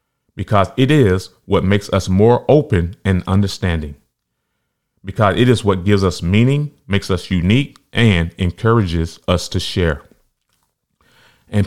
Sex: male